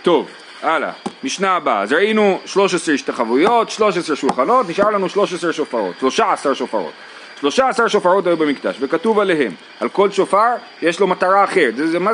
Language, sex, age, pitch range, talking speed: Hebrew, male, 30-49, 165-220 Hz, 160 wpm